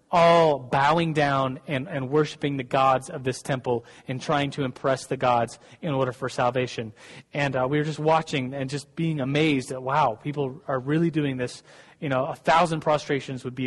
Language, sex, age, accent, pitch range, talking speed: English, male, 30-49, American, 135-165 Hz, 200 wpm